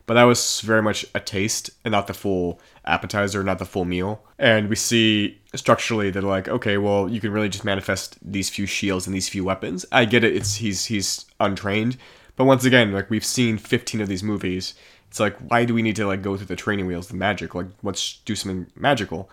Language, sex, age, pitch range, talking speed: English, male, 30-49, 95-110 Hz, 225 wpm